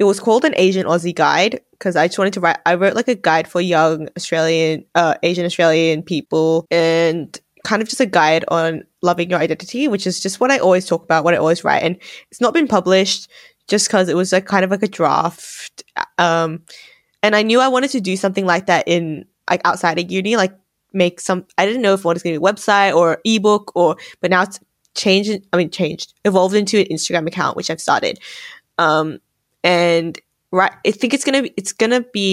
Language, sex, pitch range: English, female, 170-200 Hz